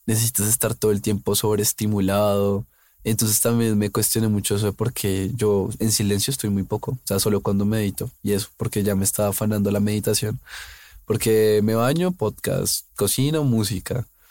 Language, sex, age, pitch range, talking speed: Spanish, male, 20-39, 105-125 Hz, 165 wpm